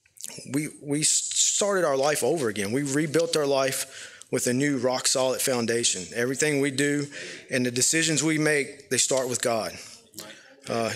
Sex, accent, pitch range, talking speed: male, American, 125-145 Hz, 160 wpm